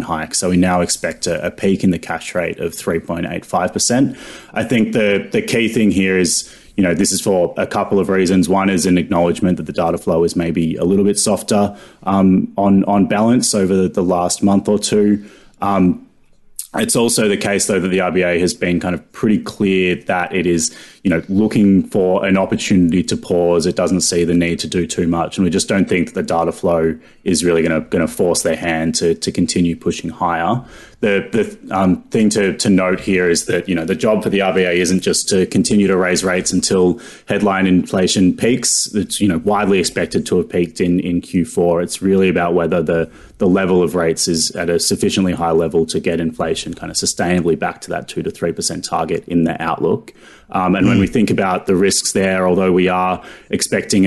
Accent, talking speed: Australian, 220 wpm